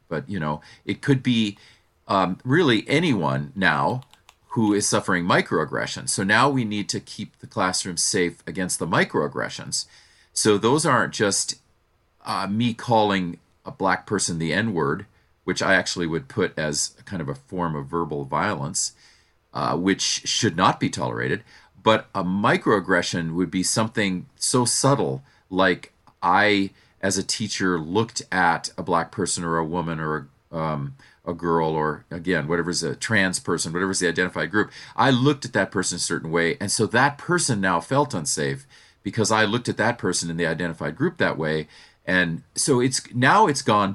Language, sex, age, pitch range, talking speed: English, male, 40-59, 85-110 Hz, 170 wpm